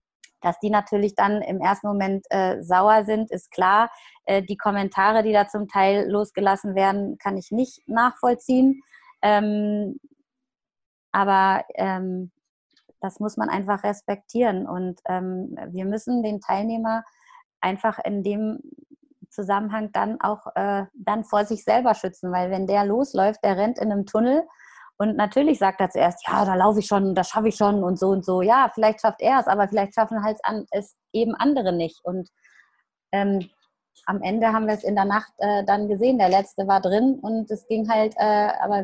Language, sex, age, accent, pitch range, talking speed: German, female, 20-39, German, 190-225 Hz, 175 wpm